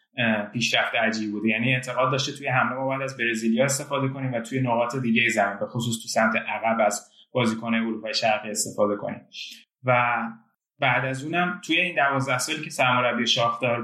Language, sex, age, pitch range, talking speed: Persian, male, 20-39, 120-140 Hz, 180 wpm